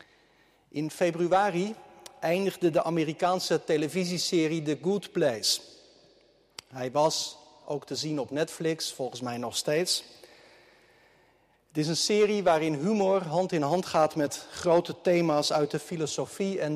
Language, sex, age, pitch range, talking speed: Dutch, male, 50-69, 155-200 Hz, 135 wpm